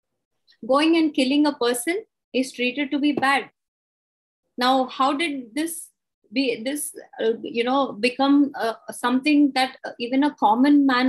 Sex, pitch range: female, 235-285 Hz